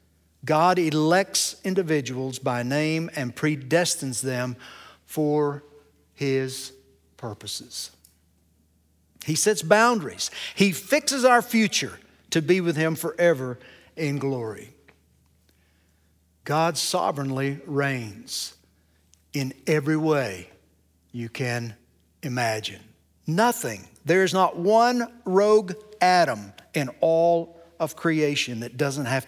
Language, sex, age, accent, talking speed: English, male, 60-79, American, 100 wpm